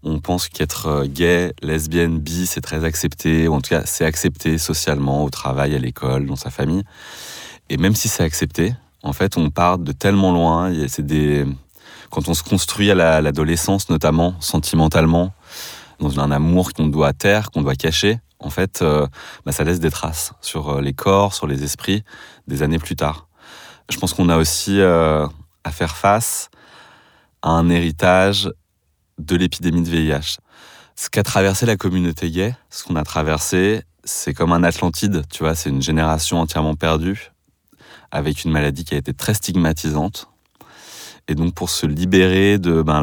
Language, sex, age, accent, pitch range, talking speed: French, male, 30-49, French, 75-90 Hz, 175 wpm